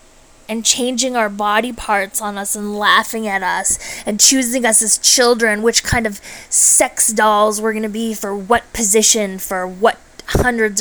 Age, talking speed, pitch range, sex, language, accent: 20-39, 165 wpm, 215-260 Hz, female, English, American